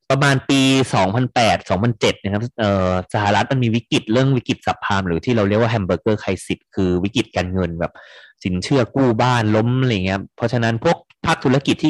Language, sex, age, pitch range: Thai, male, 20-39, 95-125 Hz